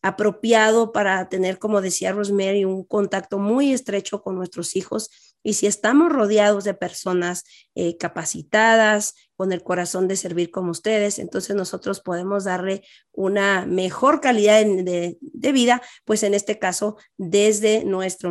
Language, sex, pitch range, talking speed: English, female, 185-215 Hz, 150 wpm